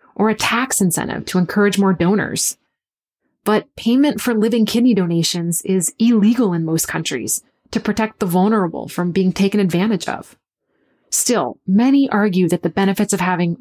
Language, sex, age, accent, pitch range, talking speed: English, female, 30-49, American, 185-220 Hz, 160 wpm